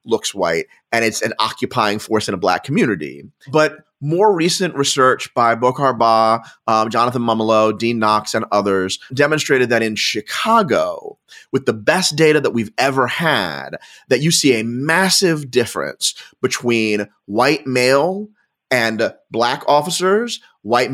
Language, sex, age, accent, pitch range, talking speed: English, male, 30-49, American, 120-160 Hz, 145 wpm